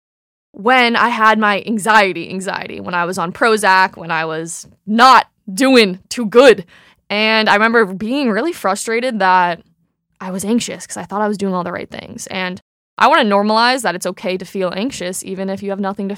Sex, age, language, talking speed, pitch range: female, 20-39, English, 205 wpm, 185-225 Hz